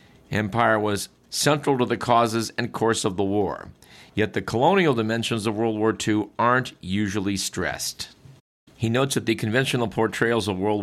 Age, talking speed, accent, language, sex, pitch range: 50-69, 165 wpm, American, English, male, 95-120 Hz